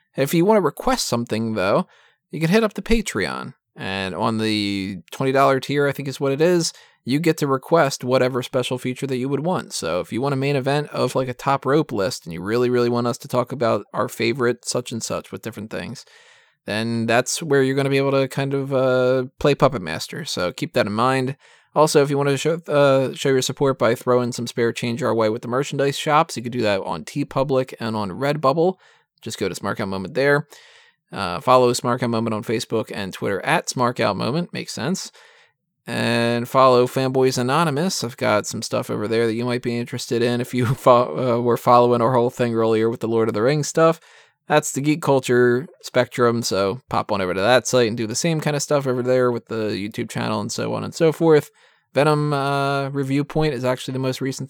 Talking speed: 230 wpm